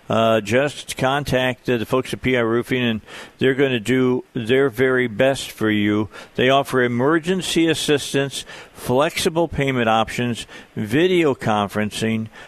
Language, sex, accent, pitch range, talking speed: English, male, American, 115-145 Hz, 130 wpm